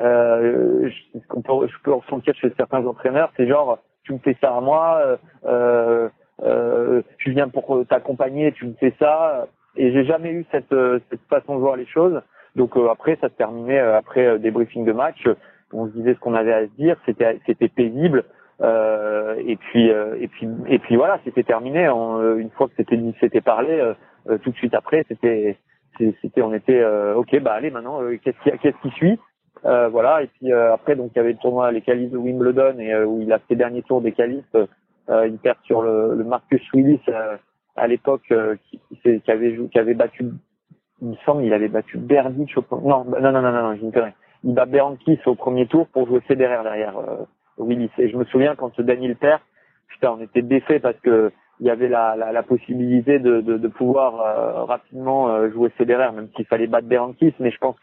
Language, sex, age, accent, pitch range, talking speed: French, male, 40-59, French, 115-135 Hz, 220 wpm